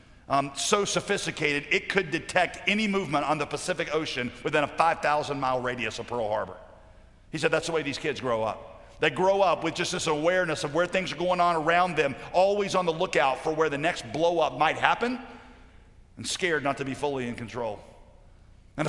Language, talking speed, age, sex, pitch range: English, 200 wpm, 50-69, male, 145-205 Hz